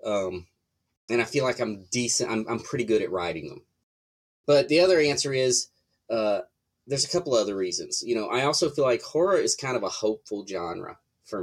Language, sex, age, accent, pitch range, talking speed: English, male, 30-49, American, 105-145 Hz, 205 wpm